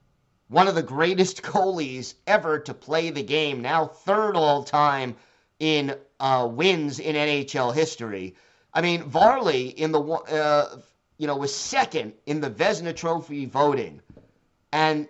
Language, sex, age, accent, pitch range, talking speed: English, male, 50-69, American, 140-175 Hz, 145 wpm